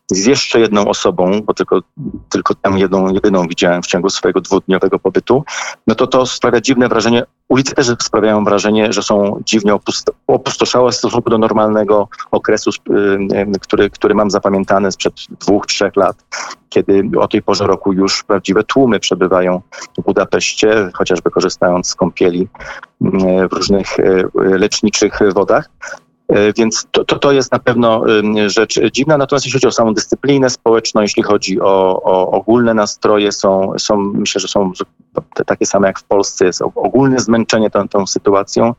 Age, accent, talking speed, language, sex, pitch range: 40-59, native, 155 wpm, Polish, male, 95-115 Hz